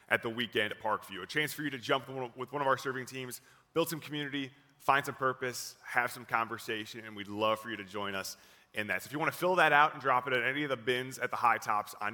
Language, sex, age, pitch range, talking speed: English, male, 30-49, 120-145 Hz, 280 wpm